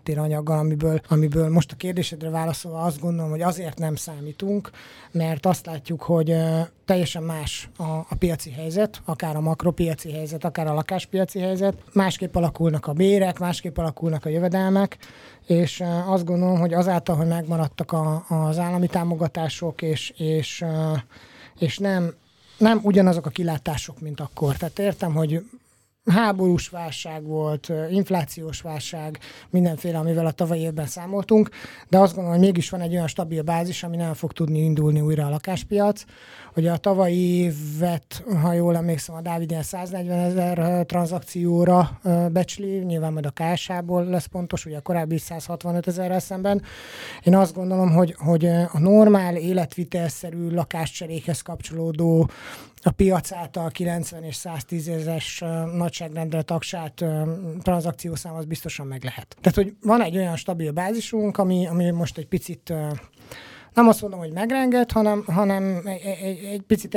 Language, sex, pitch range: Hungarian, male, 160-185 Hz